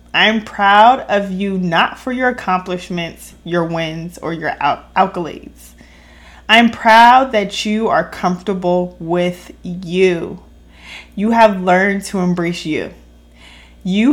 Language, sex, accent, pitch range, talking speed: English, female, American, 175-225 Hz, 125 wpm